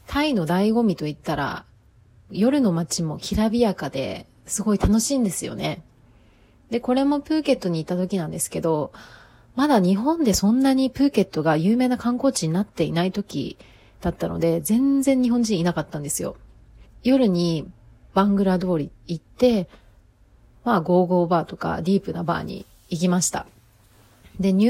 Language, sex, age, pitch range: Japanese, female, 30-49, 160-220 Hz